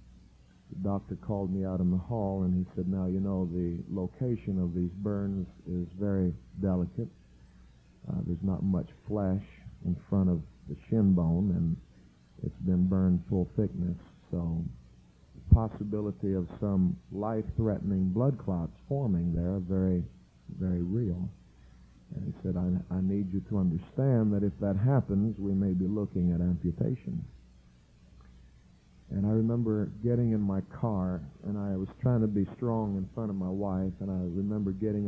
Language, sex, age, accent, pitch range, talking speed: English, male, 50-69, American, 85-100 Hz, 165 wpm